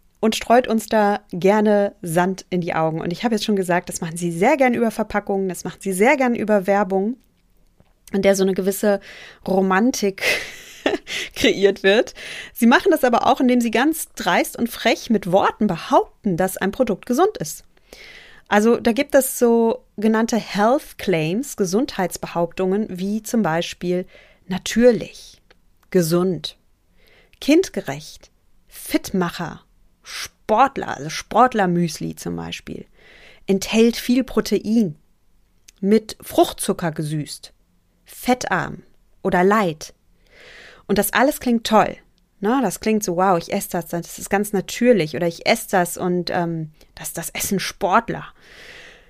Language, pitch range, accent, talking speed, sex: German, 180-230 Hz, German, 140 wpm, female